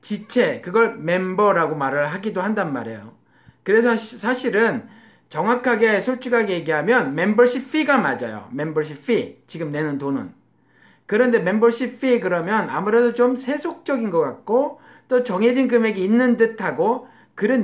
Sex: male